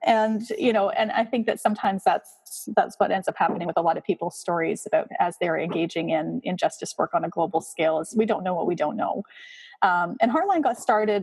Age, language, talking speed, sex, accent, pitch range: 30-49, English, 235 wpm, female, American, 180-270 Hz